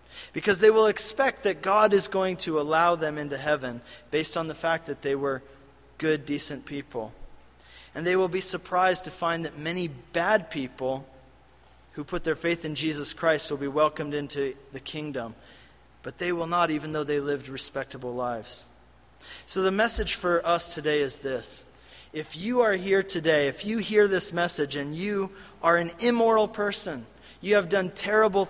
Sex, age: male, 30-49